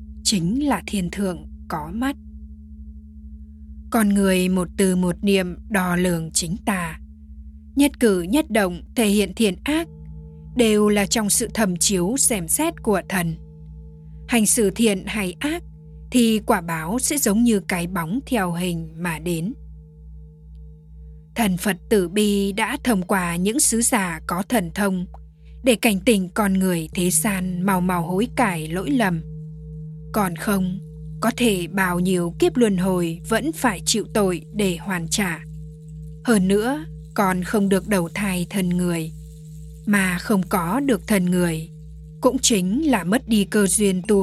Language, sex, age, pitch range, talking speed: Vietnamese, female, 10-29, 155-215 Hz, 155 wpm